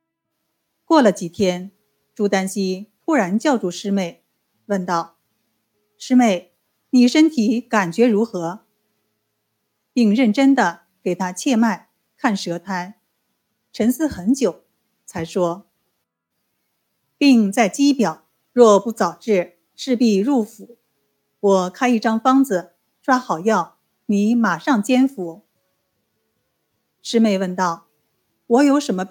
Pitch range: 180-240 Hz